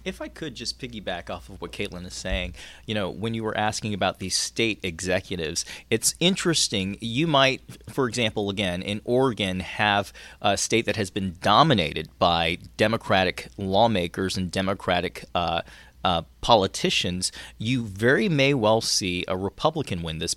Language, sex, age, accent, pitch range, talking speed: English, male, 30-49, American, 90-115 Hz, 160 wpm